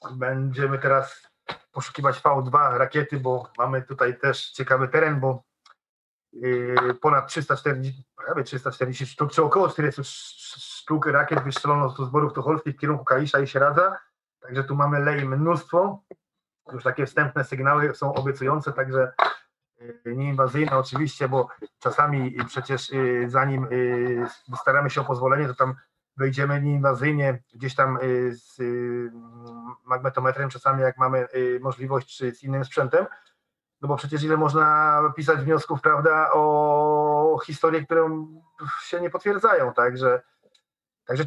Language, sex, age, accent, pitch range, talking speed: Polish, male, 30-49, native, 130-155 Hz, 125 wpm